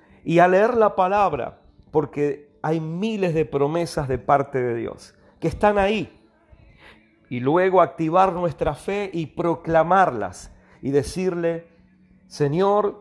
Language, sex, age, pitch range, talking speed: Spanish, male, 50-69, 140-190 Hz, 125 wpm